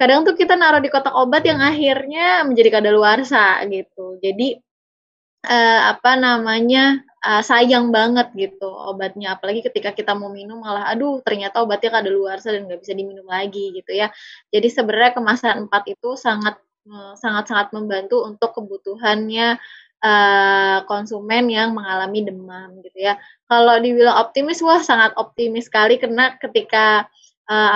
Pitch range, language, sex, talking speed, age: 200-245 Hz, Indonesian, female, 145 wpm, 20-39